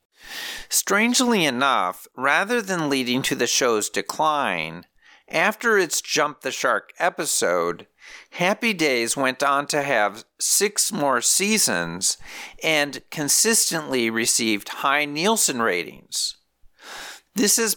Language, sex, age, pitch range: English, male, 50-69, 115-165 Hz